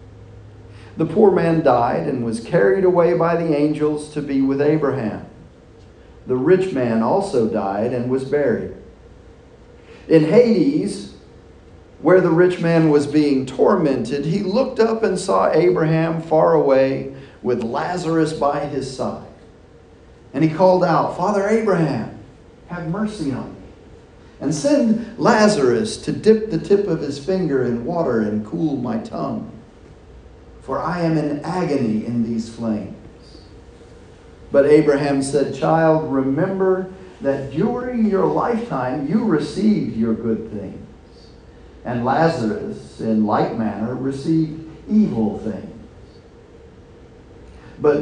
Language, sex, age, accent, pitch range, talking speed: English, male, 40-59, American, 120-185 Hz, 125 wpm